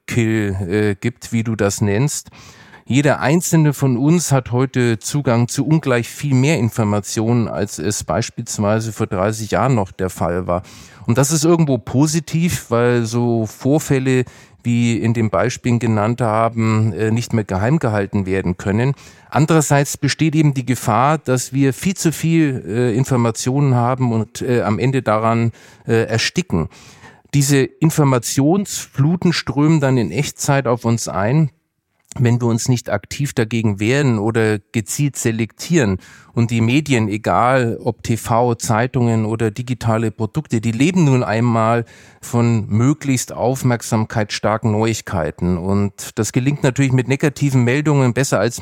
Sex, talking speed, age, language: male, 145 wpm, 40-59, German